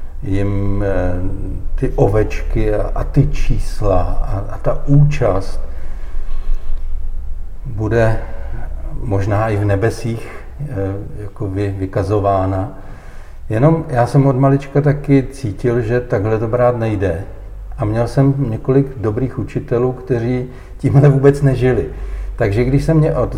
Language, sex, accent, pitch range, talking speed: Czech, male, native, 95-120 Hz, 115 wpm